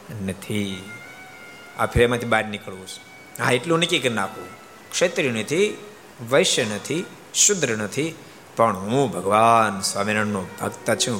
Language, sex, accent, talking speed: Gujarati, male, native, 55 wpm